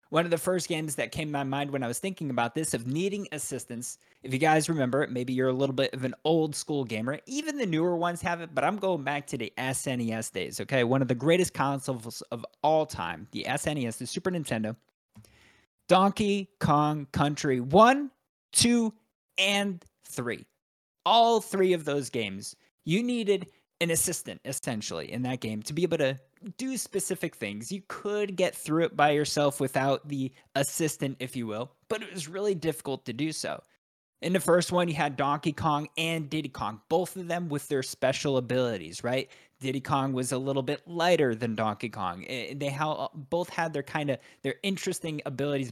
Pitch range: 130-175 Hz